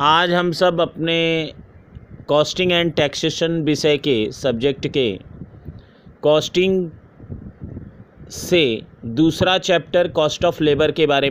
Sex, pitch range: male, 150-175 Hz